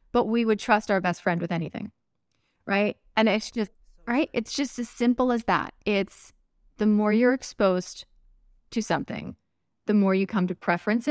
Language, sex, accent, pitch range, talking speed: English, female, American, 180-220 Hz, 180 wpm